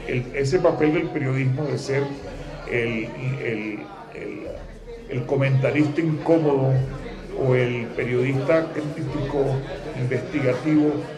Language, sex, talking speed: Spanish, male, 95 wpm